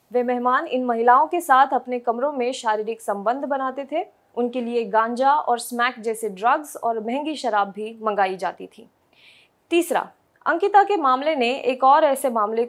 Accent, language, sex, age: native, Hindi, female, 20-39